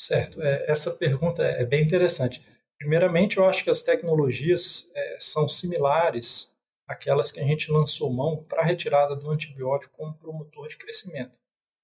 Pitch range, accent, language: 135-170 Hz, Brazilian, Portuguese